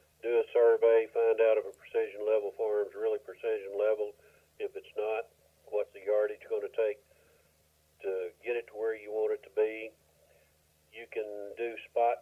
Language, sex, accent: English, male, American